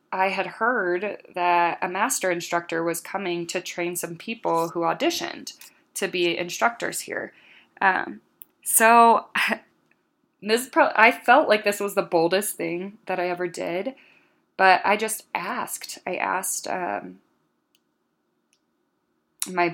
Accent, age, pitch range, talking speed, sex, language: American, 20-39, 170-200 Hz, 125 wpm, female, English